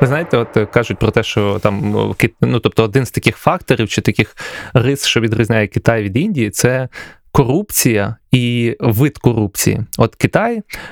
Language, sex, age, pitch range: Ukrainian, male, 20-39, 115-145 Hz